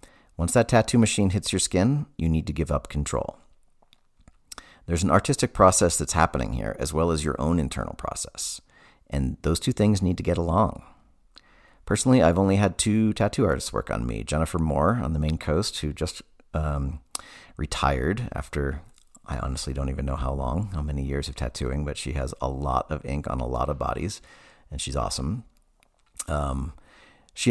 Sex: male